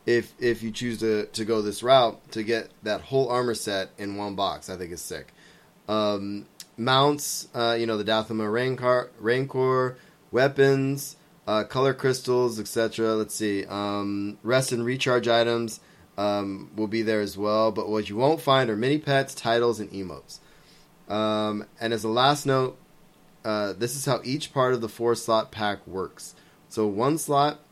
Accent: American